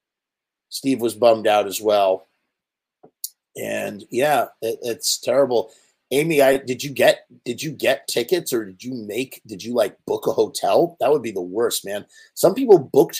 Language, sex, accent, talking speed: English, male, American, 175 wpm